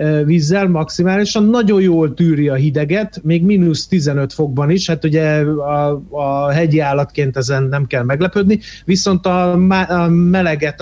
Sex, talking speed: male, 145 wpm